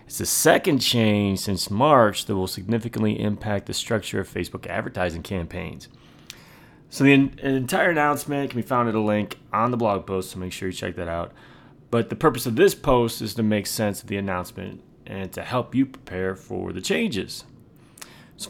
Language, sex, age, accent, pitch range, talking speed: English, male, 30-49, American, 100-135 Hz, 190 wpm